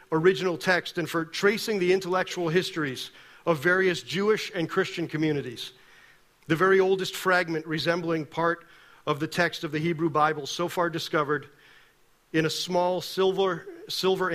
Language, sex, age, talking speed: English, male, 40-59, 145 wpm